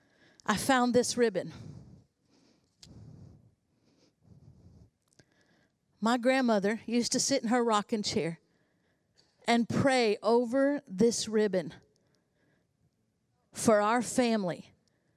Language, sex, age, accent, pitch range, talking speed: English, female, 50-69, American, 225-280 Hz, 85 wpm